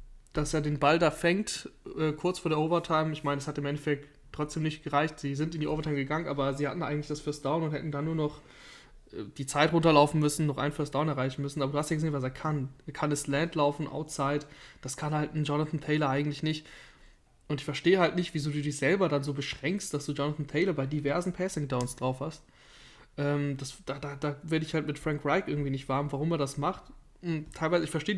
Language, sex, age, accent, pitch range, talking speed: German, male, 20-39, German, 140-155 Hz, 245 wpm